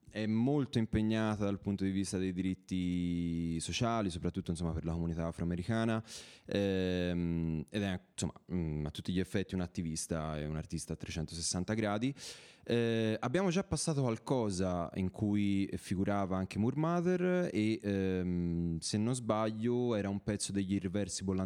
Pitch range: 90-120 Hz